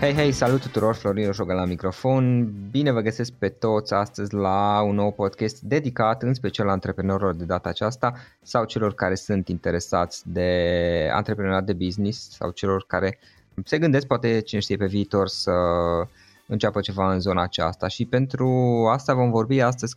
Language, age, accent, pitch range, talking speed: Romanian, 20-39, native, 95-115 Hz, 170 wpm